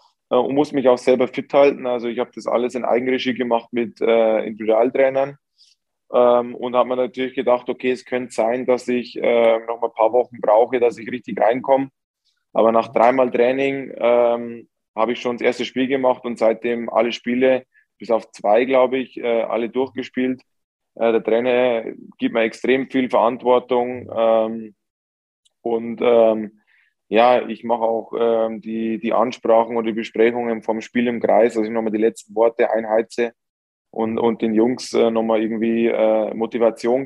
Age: 20-39